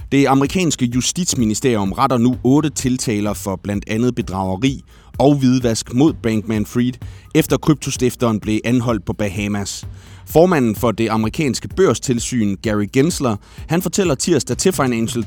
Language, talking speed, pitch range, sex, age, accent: Danish, 130 wpm, 105-135 Hz, male, 30-49, native